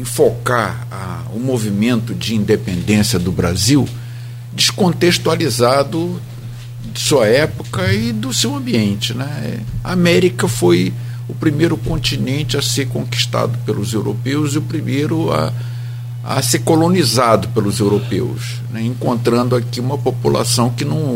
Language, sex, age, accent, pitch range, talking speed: Portuguese, male, 50-69, Brazilian, 110-125 Hz, 125 wpm